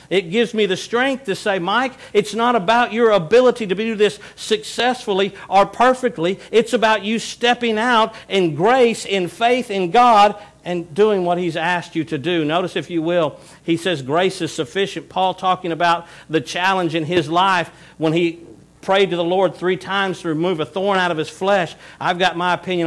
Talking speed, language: 195 wpm, English